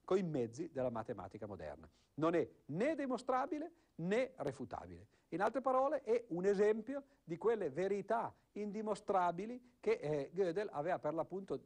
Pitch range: 120-200 Hz